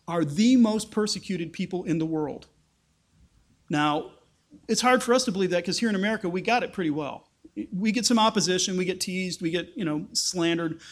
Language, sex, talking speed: English, male, 205 wpm